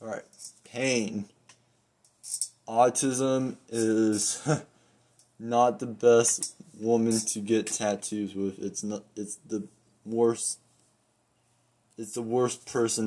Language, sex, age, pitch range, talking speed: English, male, 20-39, 105-120 Hz, 100 wpm